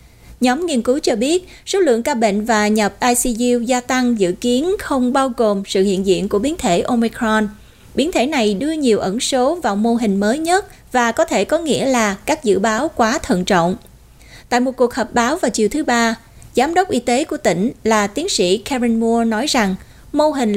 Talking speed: 215 wpm